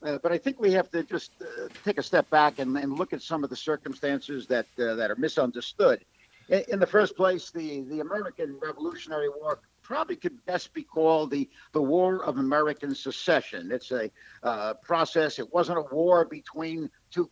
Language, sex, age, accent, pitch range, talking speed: English, male, 60-79, American, 145-185 Hz, 200 wpm